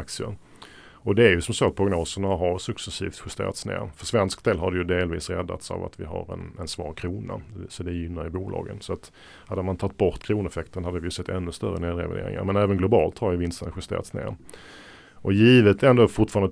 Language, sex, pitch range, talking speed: Swedish, male, 90-105 Hz, 220 wpm